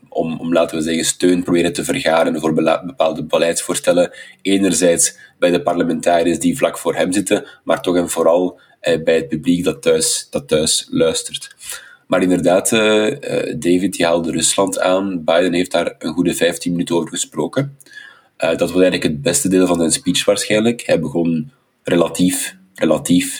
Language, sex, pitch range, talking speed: Dutch, male, 85-110 Hz, 175 wpm